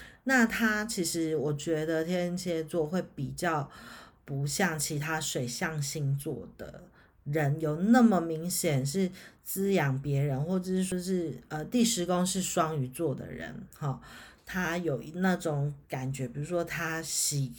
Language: Chinese